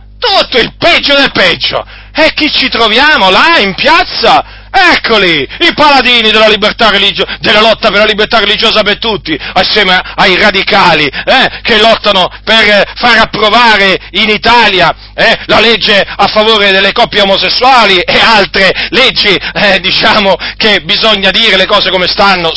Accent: native